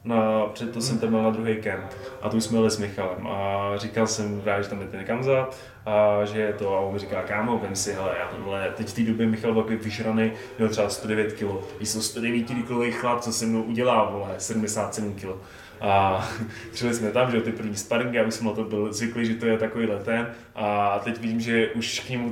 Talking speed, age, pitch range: 220 wpm, 20-39, 110-140 Hz